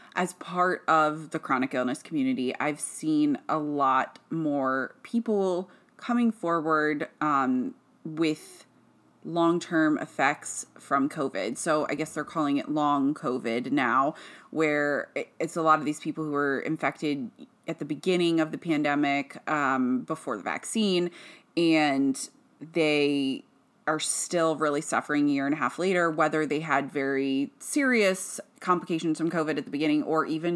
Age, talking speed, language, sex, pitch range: 20-39, 145 wpm, English, female, 145-175 Hz